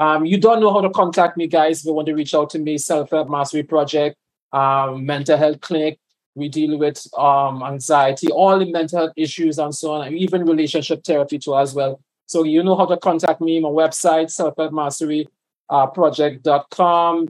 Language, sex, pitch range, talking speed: English, male, 155-185 Hz, 190 wpm